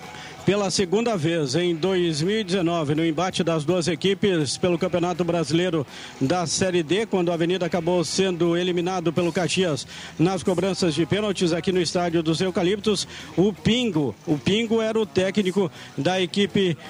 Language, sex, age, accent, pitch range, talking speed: Portuguese, male, 50-69, Brazilian, 170-200 Hz, 150 wpm